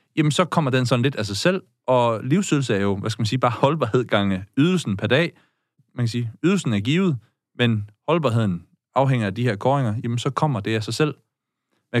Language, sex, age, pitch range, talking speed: Danish, male, 30-49, 105-135 Hz, 220 wpm